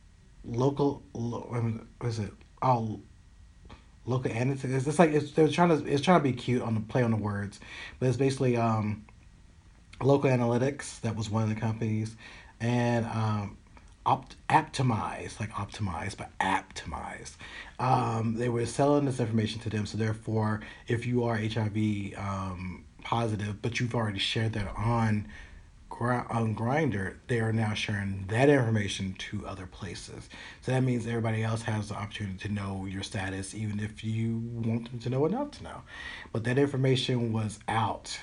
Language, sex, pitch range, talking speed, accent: English, male, 100-120 Hz, 170 wpm, American